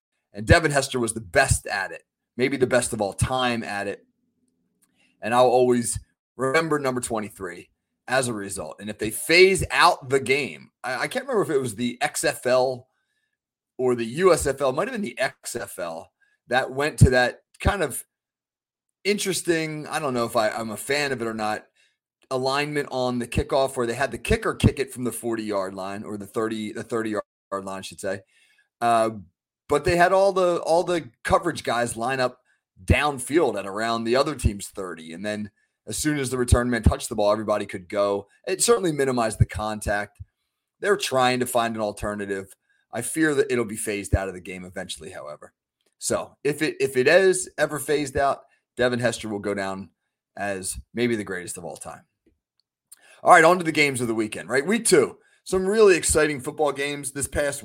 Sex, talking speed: male, 195 wpm